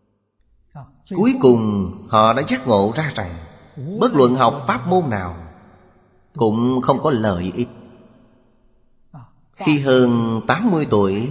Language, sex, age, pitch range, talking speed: Vietnamese, male, 30-49, 100-130 Hz, 120 wpm